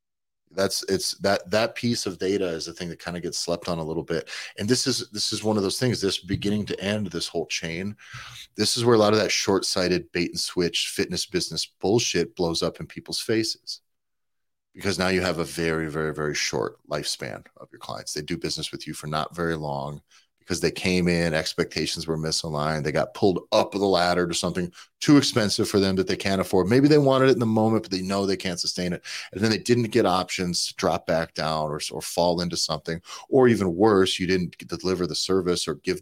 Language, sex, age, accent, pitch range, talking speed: English, male, 30-49, American, 85-105 Hz, 230 wpm